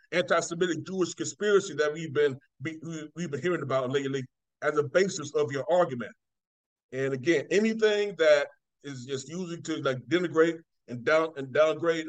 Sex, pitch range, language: male, 145-180 Hz, English